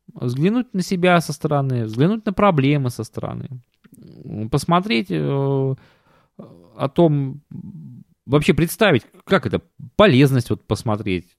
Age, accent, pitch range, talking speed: 20-39, native, 105-165 Hz, 110 wpm